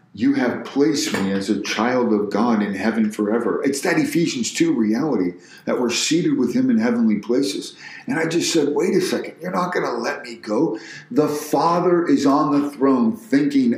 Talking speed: 200 wpm